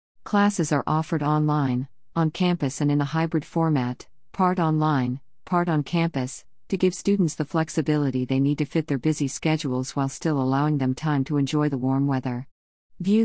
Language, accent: English, American